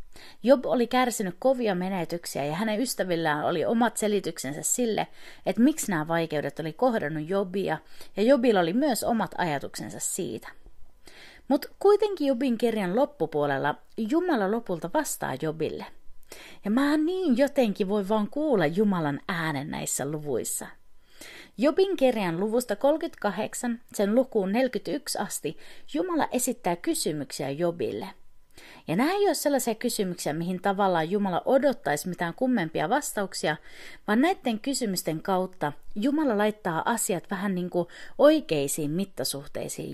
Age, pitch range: 30-49, 170-260 Hz